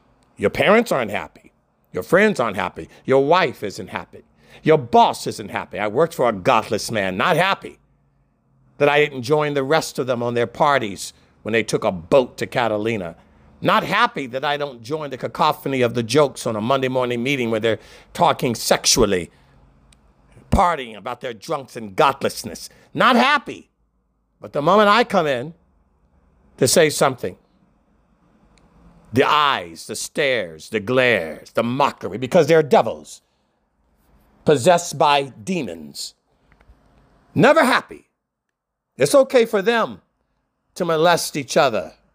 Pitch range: 105-175 Hz